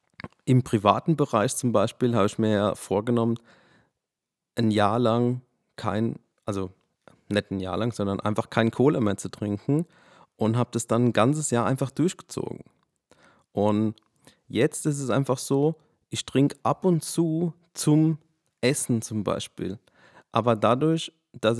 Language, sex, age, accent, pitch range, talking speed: German, male, 40-59, German, 105-130 Hz, 145 wpm